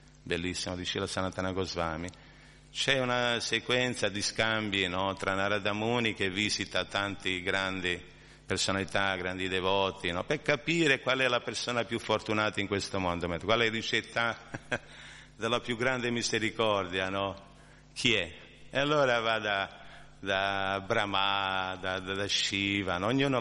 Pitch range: 95-120 Hz